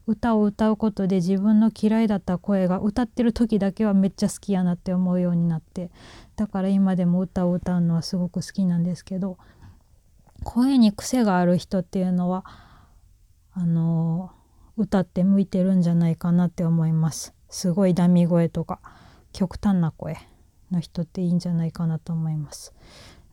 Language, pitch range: Japanese, 170-200 Hz